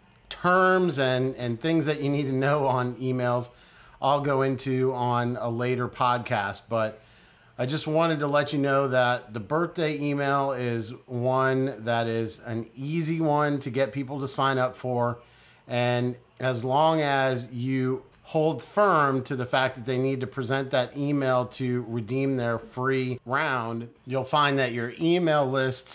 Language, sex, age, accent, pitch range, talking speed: English, male, 40-59, American, 125-150 Hz, 165 wpm